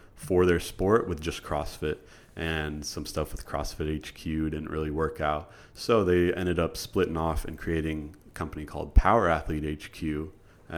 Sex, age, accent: male, 30-49, American